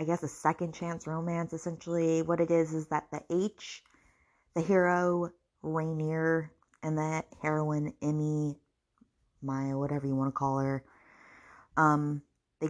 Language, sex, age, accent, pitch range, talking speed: English, female, 20-39, American, 145-175 Hz, 140 wpm